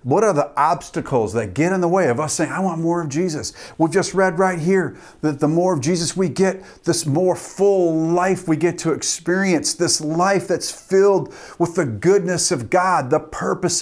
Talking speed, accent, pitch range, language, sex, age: 210 wpm, American, 115-185 Hz, English, male, 40-59